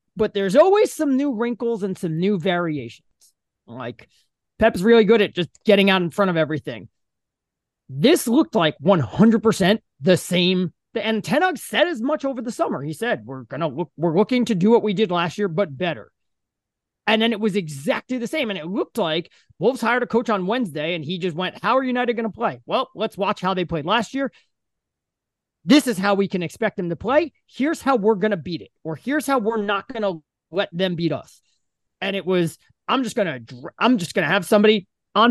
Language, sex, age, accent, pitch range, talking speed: English, male, 30-49, American, 175-235 Hz, 220 wpm